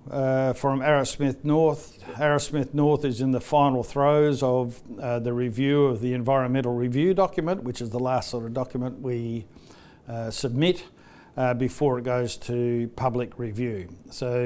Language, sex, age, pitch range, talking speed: English, male, 60-79, 125-145 Hz, 160 wpm